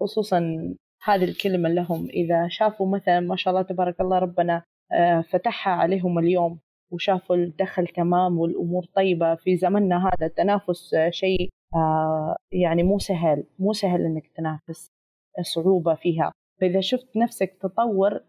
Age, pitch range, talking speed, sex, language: 30-49, 170-195 Hz, 130 wpm, female, Arabic